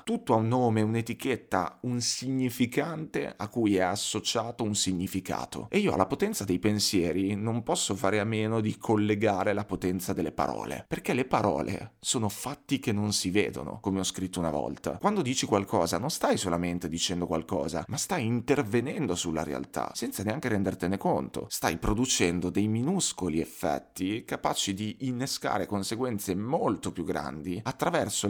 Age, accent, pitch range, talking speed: 30-49, native, 90-115 Hz, 155 wpm